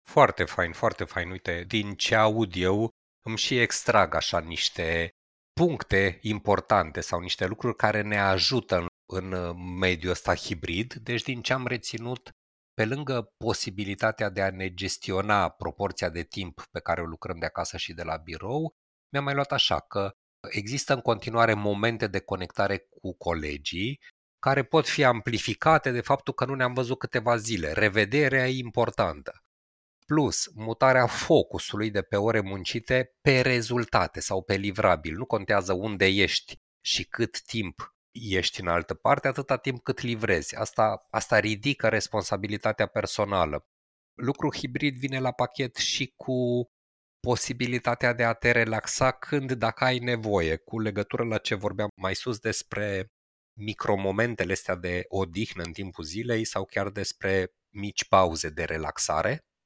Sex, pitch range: male, 95-125 Hz